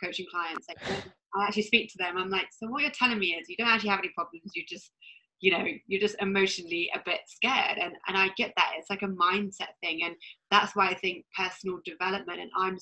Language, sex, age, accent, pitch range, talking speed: English, female, 20-39, British, 180-210 Hz, 240 wpm